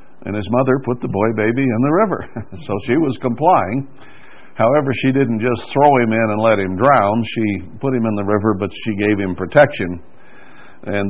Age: 60-79